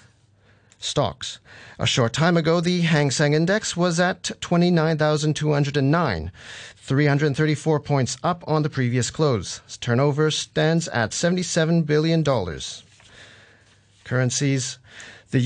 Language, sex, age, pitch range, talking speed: English, male, 40-59, 120-165 Hz, 100 wpm